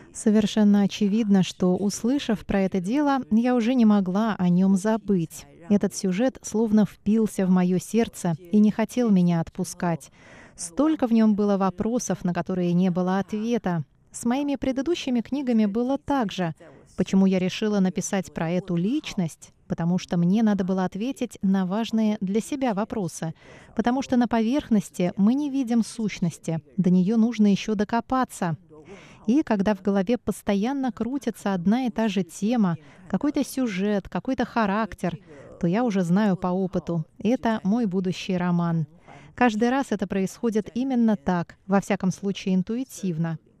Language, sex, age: Russian, female, 20-39